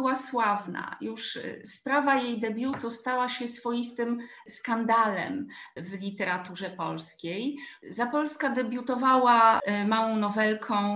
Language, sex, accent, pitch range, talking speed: Polish, female, native, 205-245 Hz, 100 wpm